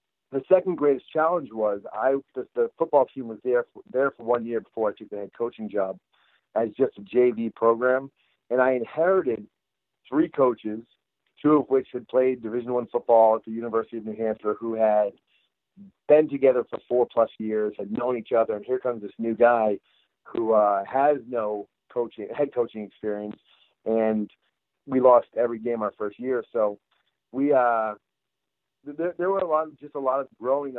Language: English